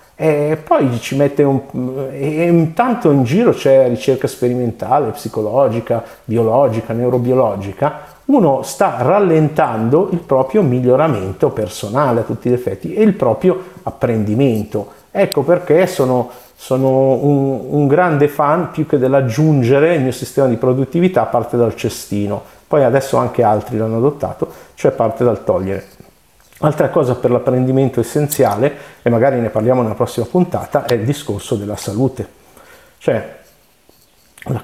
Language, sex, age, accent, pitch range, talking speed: Italian, male, 50-69, native, 115-145 Hz, 135 wpm